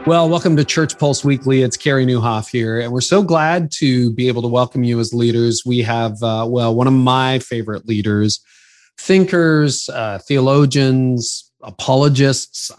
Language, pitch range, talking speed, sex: English, 115-135 Hz, 165 wpm, male